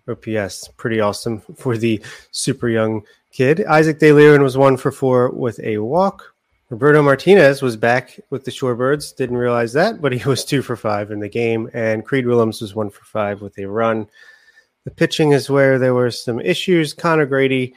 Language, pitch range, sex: English, 115-140 Hz, male